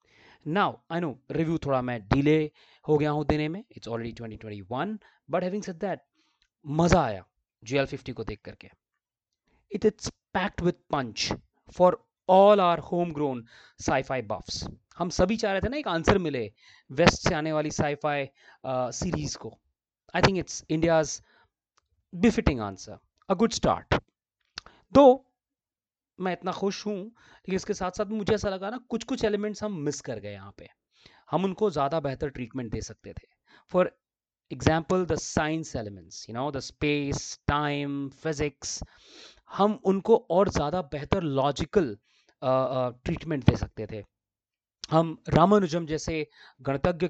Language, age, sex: Hindi, 30-49, male